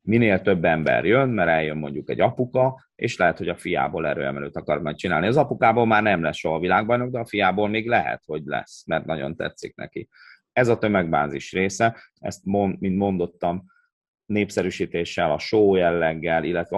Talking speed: 175 wpm